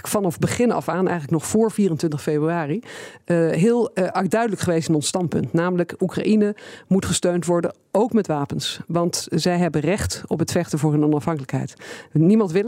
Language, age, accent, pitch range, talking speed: Dutch, 50-69, Dutch, 160-195 Hz, 175 wpm